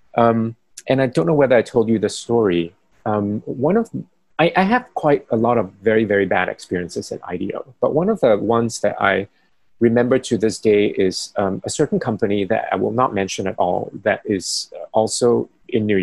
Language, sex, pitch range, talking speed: English, male, 105-150 Hz, 205 wpm